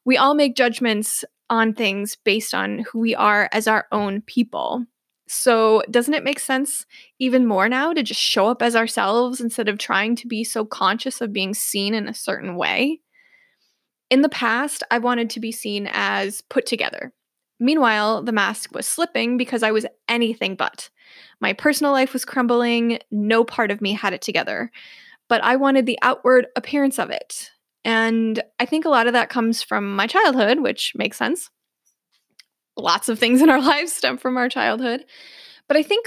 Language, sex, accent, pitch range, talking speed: English, female, American, 225-275 Hz, 185 wpm